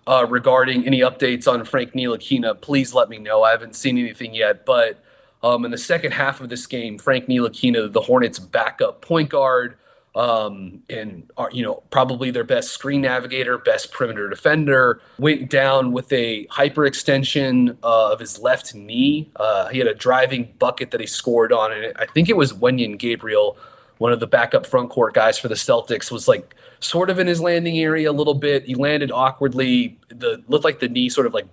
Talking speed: 195 wpm